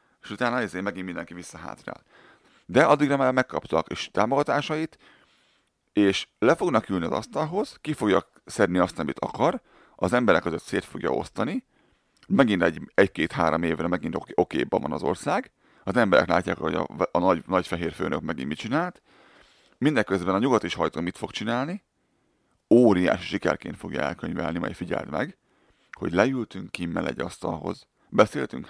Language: Hungarian